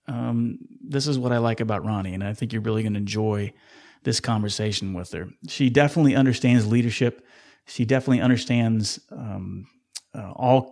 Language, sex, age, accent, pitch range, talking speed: English, male, 30-49, American, 110-130 Hz, 170 wpm